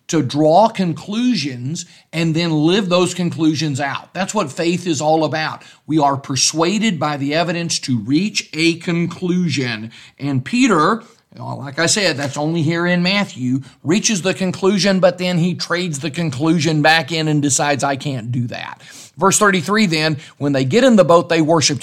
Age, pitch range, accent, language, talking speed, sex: 50-69, 135-180 Hz, American, English, 175 wpm, male